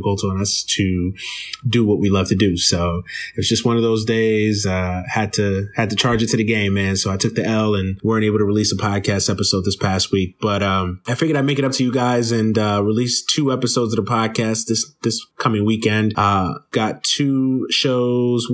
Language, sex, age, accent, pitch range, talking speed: English, male, 30-49, American, 100-115 Hz, 235 wpm